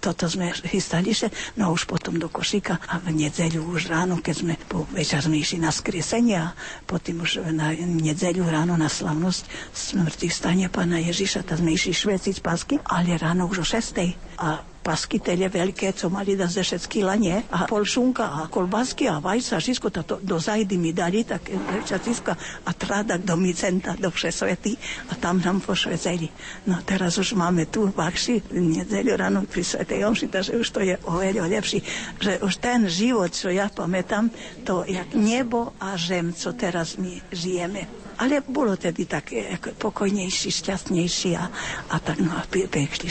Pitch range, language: 170-205 Hz, Slovak